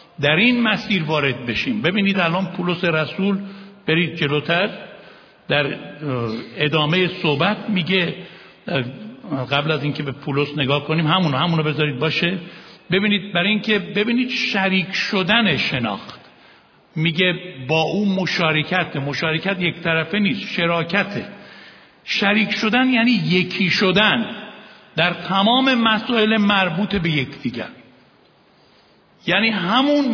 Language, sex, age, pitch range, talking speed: Persian, male, 60-79, 145-195 Hz, 110 wpm